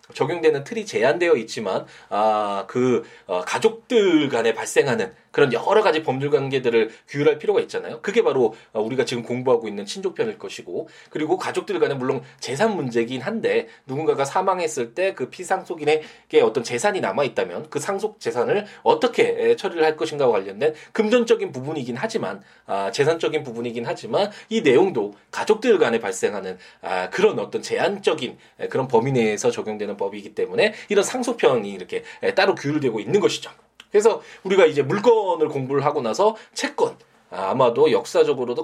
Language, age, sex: Korean, 20-39, male